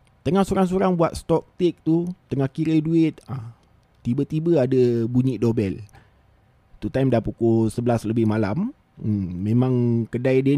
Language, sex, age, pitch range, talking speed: Malay, male, 20-39, 115-170 Hz, 130 wpm